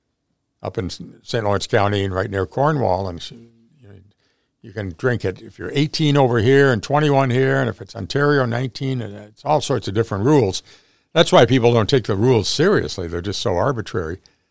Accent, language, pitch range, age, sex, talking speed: American, English, 95-130 Hz, 60-79, male, 190 wpm